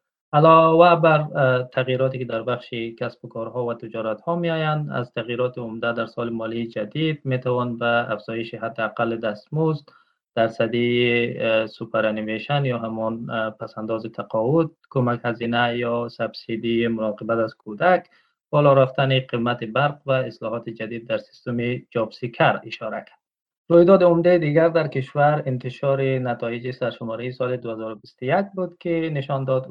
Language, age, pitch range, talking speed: Persian, 20-39, 115-140 Hz, 130 wpm